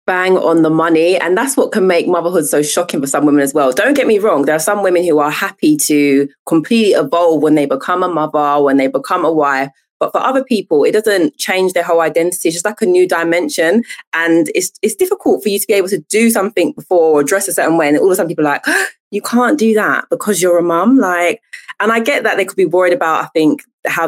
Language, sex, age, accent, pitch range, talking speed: English, female, 20-39, British, 155-220 Hz, 260 wpm